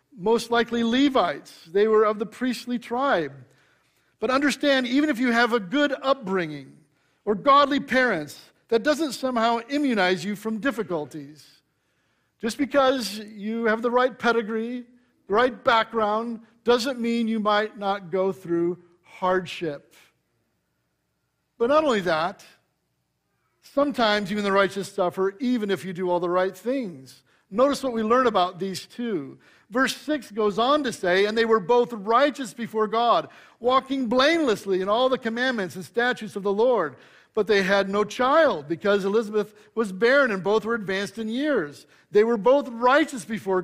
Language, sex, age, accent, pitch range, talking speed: English, male, 50-69, American, 190-255 Hz, 155 wpm